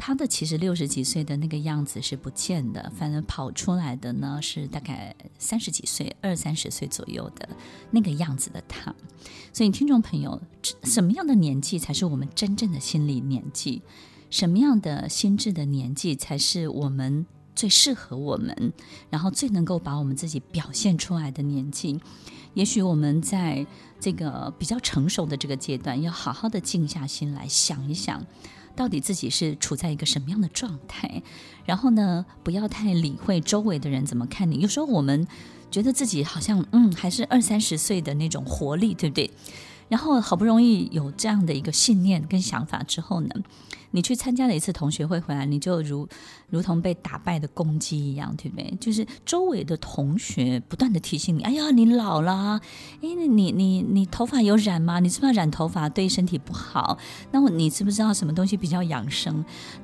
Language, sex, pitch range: Chinese, female, 145-210 Hz